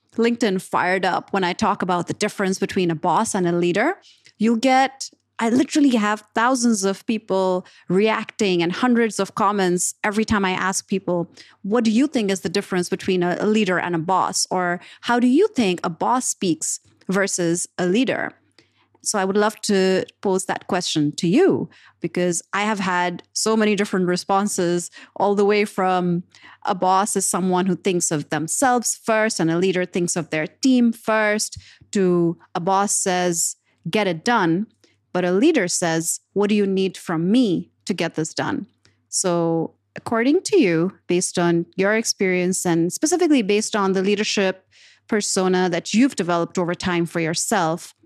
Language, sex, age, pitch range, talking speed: English, female, 30-49, 175-215 Hz, 175 wpm